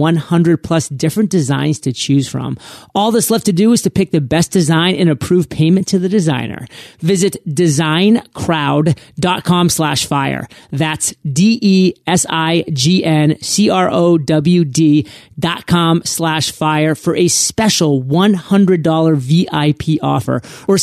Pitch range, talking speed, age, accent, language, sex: 150-185 Hz, 110 wpm, 30-49, American, English, male